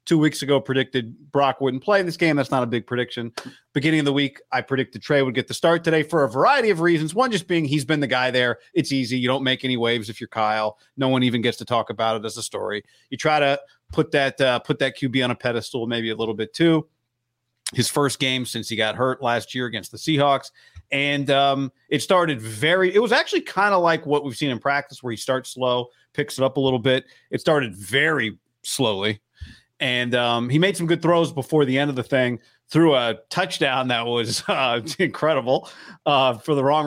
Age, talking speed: 30-49, 235 wpm